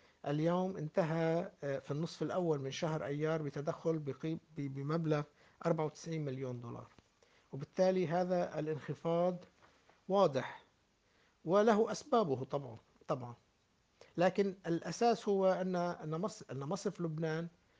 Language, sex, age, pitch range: Arabic, male, 60-79, 145-185 Hz